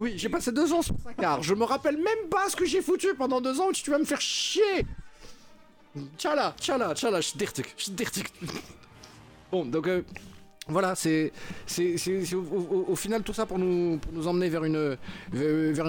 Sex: male